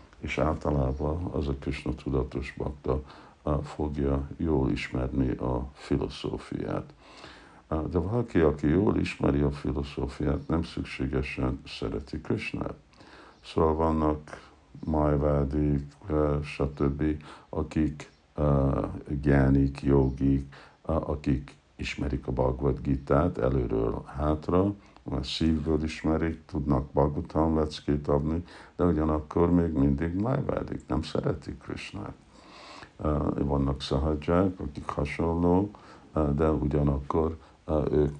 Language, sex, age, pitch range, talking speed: Hungarian, male, 60-79, 70-80 Hz, 90 wpm